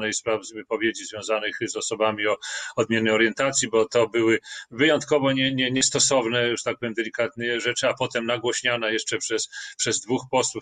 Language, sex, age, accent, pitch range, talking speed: Polish, male, 40-59, native, 115-135 Hz, 170 wpm